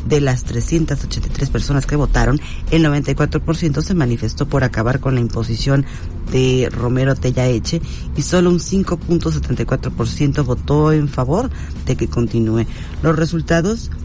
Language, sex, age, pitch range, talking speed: Spanish, female, 40-59, 120-150 Hz, 130 wpm